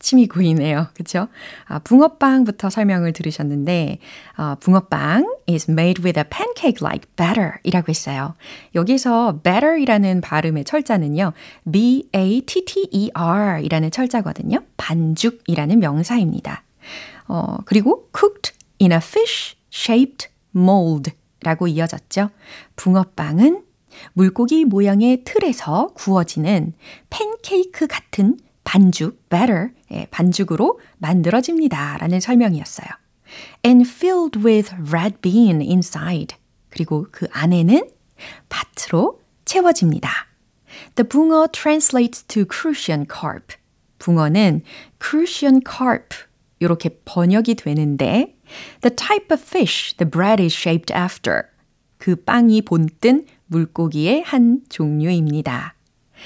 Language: Korean